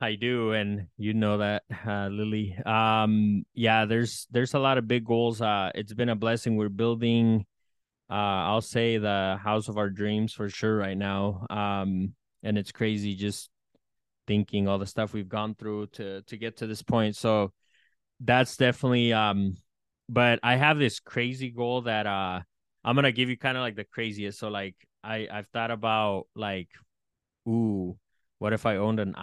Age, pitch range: 20-39, 100-115 Hz